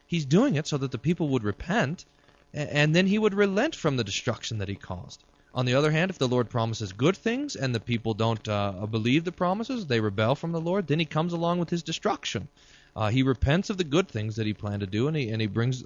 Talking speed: 255 wpm